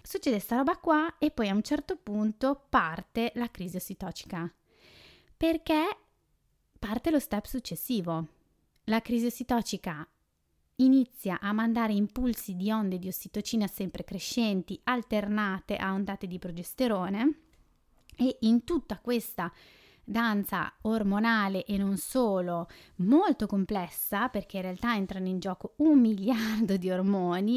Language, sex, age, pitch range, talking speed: Italian, female, 20-39, 185-230 Hz, 125 wpm